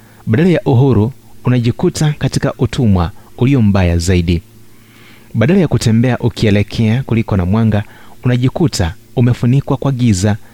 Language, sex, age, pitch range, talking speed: Swahili, male, 30-49, 100-125 Hz, 115 wpm